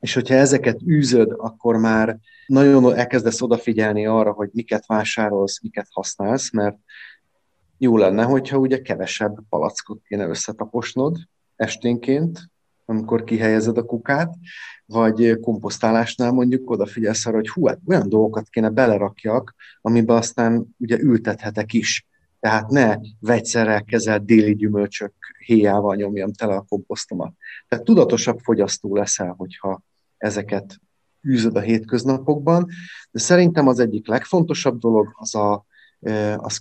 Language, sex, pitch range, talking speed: Hungarian, male, 105-125 Hz, 120 wpm